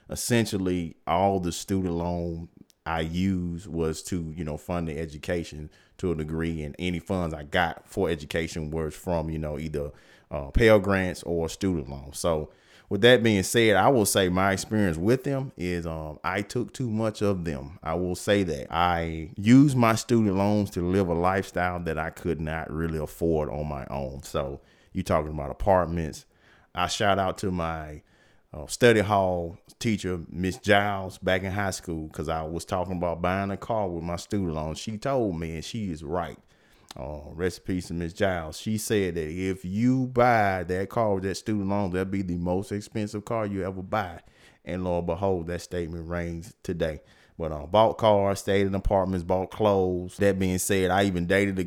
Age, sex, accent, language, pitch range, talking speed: 30-49, male, American, English, 85-100 Hz, 195 wpm